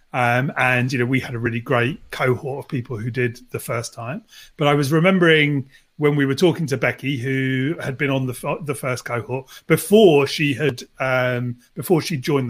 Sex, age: male, 30-49